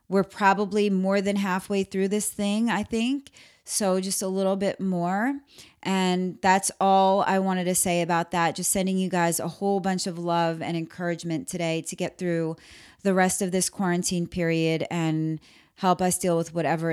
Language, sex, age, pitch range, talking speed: English, female, 30-49, 175-200 Hz, 185 wpm